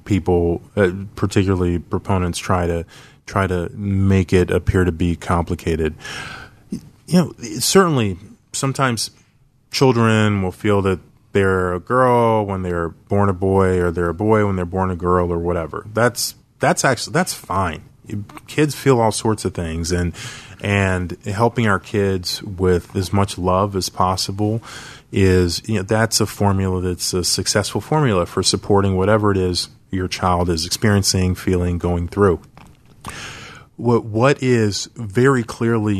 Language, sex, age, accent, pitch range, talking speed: English, male, 30-49, American, 90-115 Hz, 150 wpm